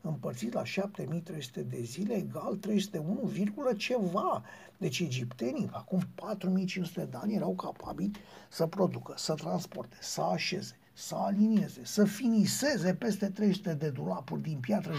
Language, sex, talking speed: Romanian, male, 130 wpm